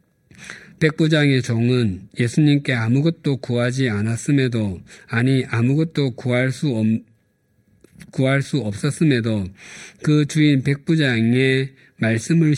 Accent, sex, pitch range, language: native, male, 110-140 Hz, Korean